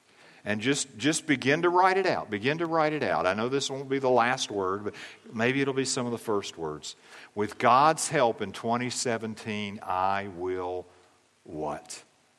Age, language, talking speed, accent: 50-69, English, 185 wpm, American